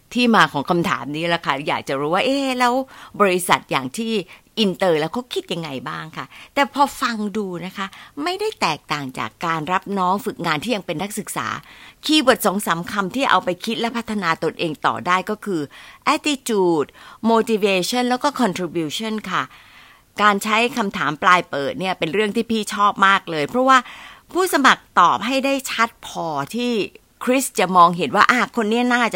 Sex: female